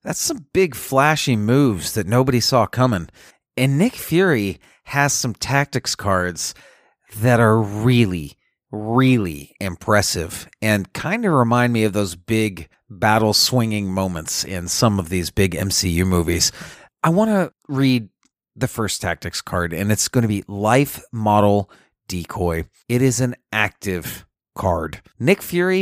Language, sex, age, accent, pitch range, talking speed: English, male, 30-49, American, 100-130 Hz, 145 wpm